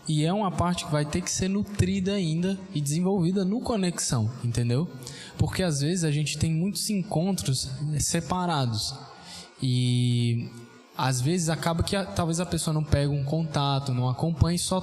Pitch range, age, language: 135-185 Hz, 10-29, Portuguese